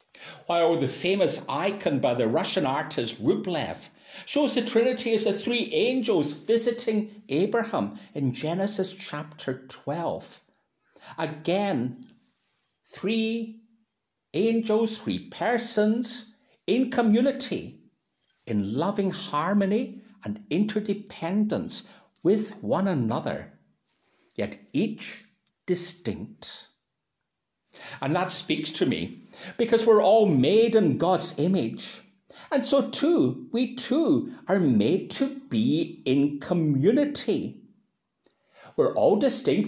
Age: 60-79